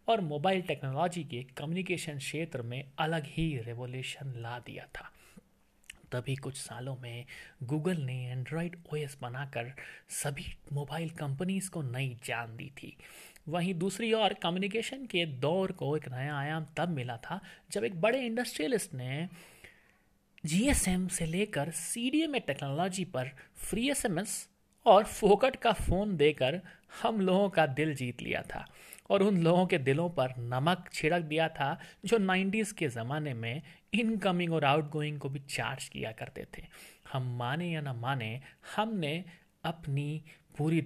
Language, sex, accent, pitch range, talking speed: Hindi, male, native, 130-185 Hz, 145 wpm